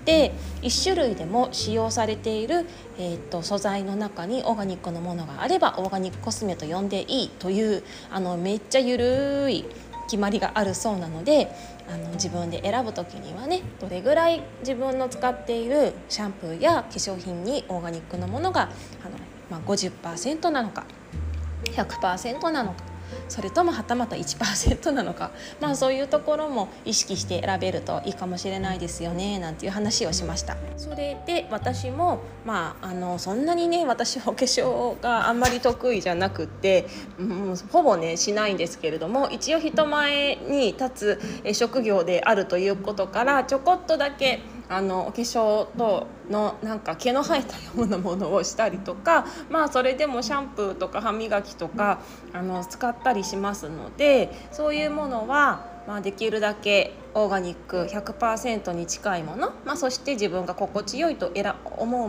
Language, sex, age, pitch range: Japanese, female, 20-39, 185-265 Hz